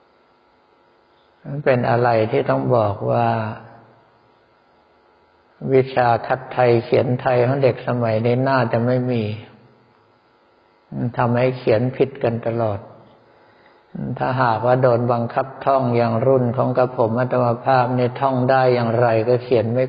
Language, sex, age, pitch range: Thai, male, 60-79, 115-130 Hz